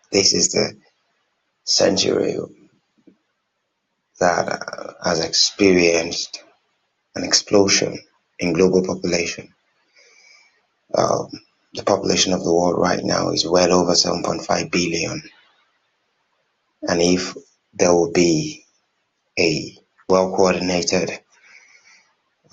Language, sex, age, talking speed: English, male, 30-49, 85 wpm